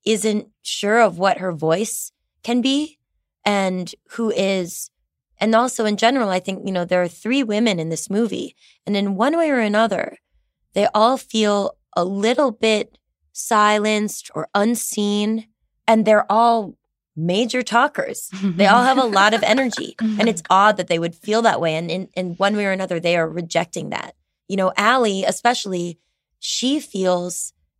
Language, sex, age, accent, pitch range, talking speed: English, female, 20-39, American, 175-215 Hz, 170 wpm